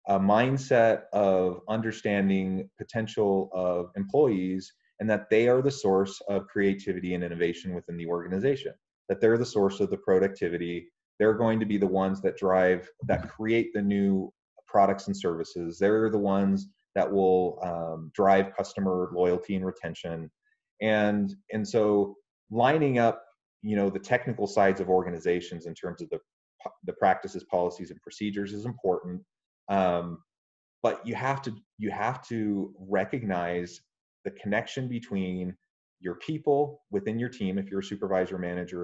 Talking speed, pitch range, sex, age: 150 wpm, 90-110 Hz, male, 30-49